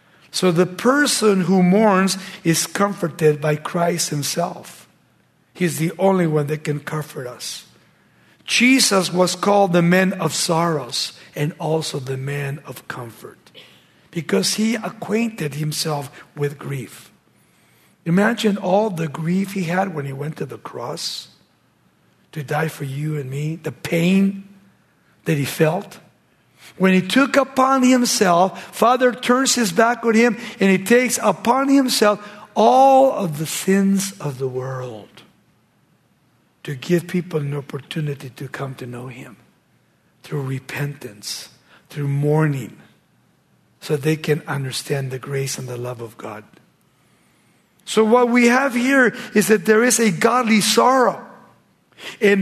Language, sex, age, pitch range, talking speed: English, male, 60-79, 150-215 Hz, 140 wpm